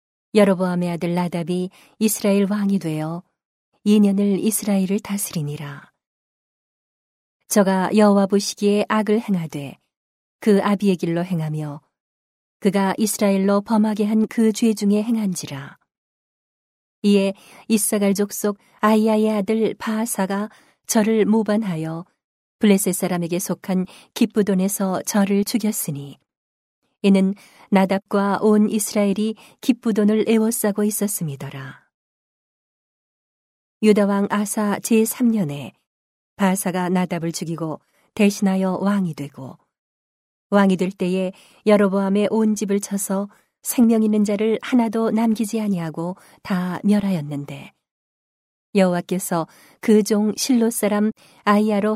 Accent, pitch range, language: native, 180-215 Hz, Korean